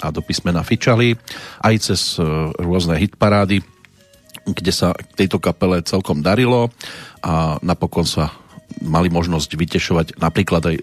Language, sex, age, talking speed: Slovak, male, 40-59, 120 wpm